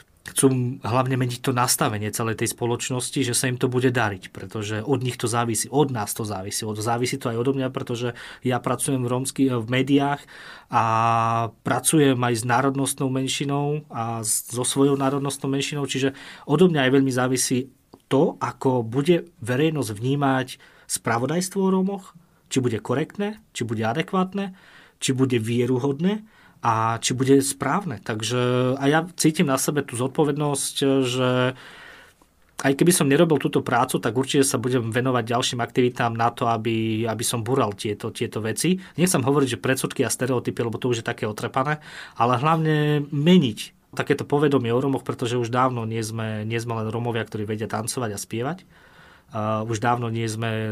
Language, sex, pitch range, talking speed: Slovak, male, 115-140 Hz, 170 wpm